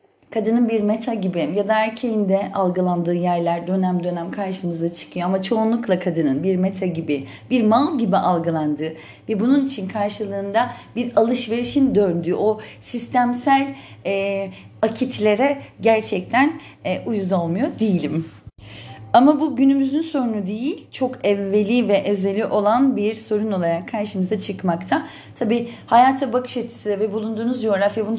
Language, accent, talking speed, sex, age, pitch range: Turkish, native, 135 wpm, female, 40-59, 195-245 Hz